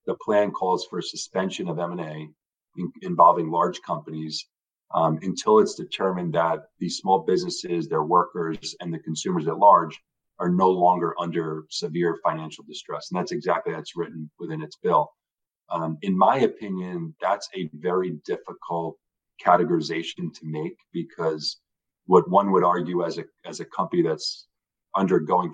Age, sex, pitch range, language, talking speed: 40-59, male, 80-95 Hz, English, 150 wpm